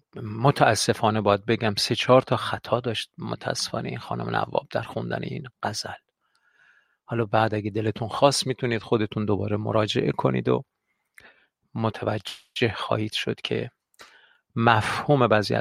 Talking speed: 125 wpm